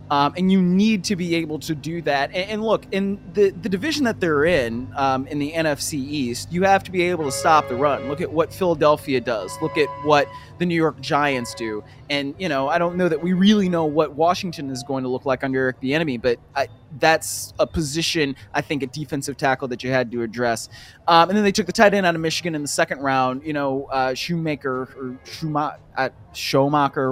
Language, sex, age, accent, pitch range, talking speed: English, male, 20-39, American, 135-175 Hz, 230 wpm